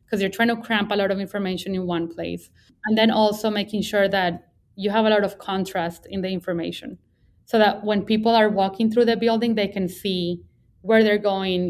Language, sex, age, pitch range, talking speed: English, female, 20-39, 190-225 Hz, 215 wpm